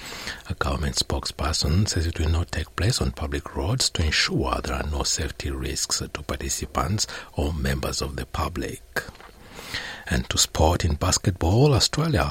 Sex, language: male, English